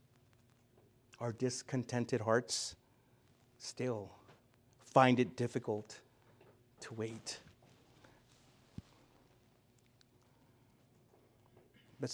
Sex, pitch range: male, 120-160 Hz